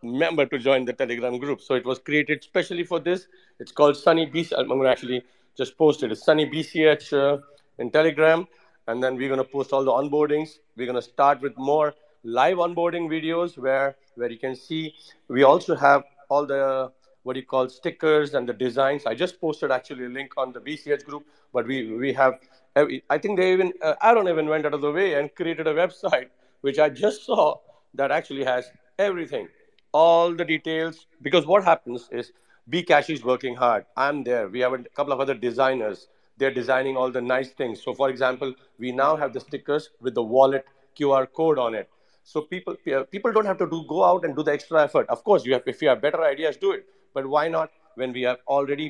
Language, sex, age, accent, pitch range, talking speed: English, male, 50-69, Indian, 130-165 Hz, 220 wpm